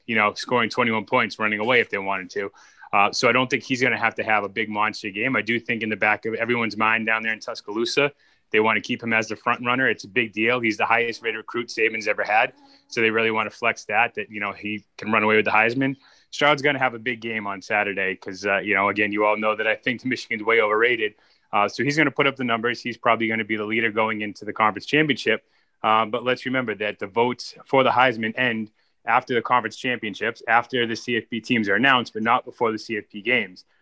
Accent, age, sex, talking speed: American, 20-39, male, 260 wpm